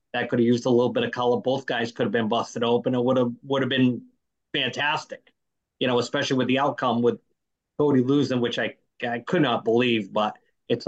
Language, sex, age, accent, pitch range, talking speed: English, male, 30-49, American, 120-135 Hz, 220 wpm